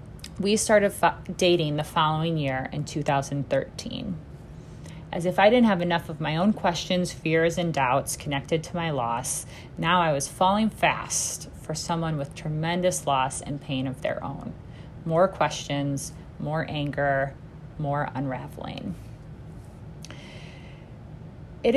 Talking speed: 130 wpm